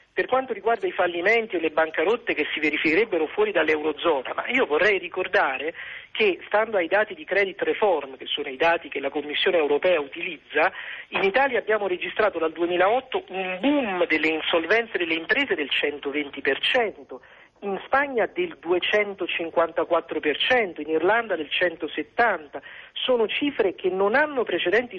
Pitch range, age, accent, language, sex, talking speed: 175-260 Hz, 50-69, native, Italian, male, 145 wpm